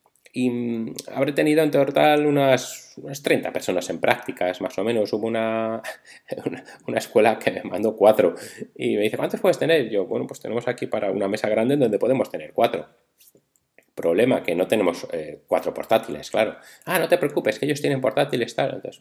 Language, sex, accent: Spanish, male, Spanish